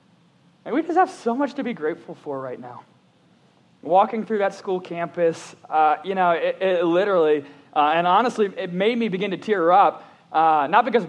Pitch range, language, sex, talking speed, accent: 165-210 Hz, English, male, 195 wpm, American